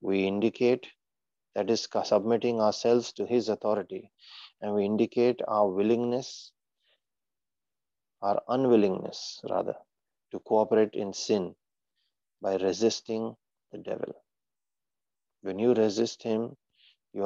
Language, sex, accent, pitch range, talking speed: English, male, Indian, 105-115 Hz, 105 wpm